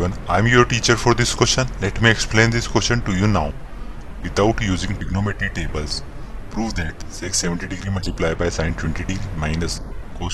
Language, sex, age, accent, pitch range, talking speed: Hindi, male, 30-49, native, 80-105 Hz, 180 wpm